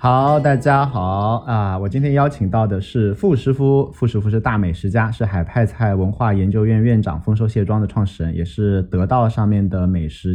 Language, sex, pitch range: Chinese, male, 95-120 Hz